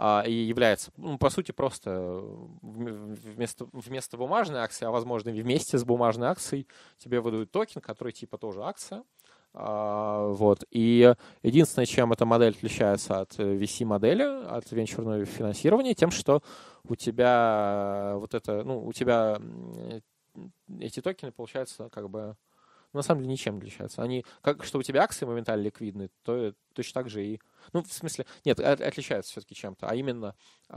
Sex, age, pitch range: male, 20-39, 105-130 Hz